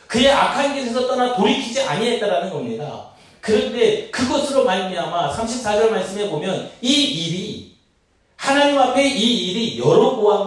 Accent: native